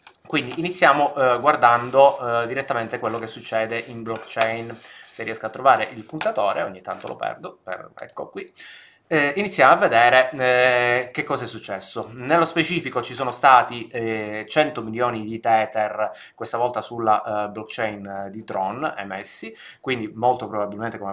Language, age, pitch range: Italian, 20-39, 105-125 Hz